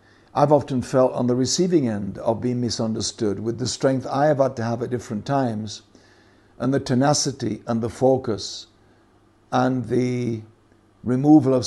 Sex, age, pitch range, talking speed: male, 60-79, 115-135 Hz, 160 wpm